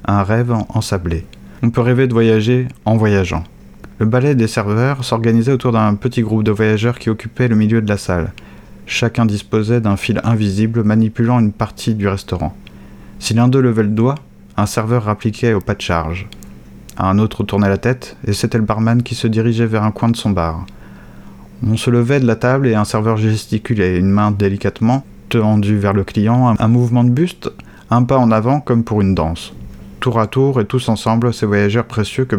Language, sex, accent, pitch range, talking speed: French, male, French, 100-115 Hz, 200 wpm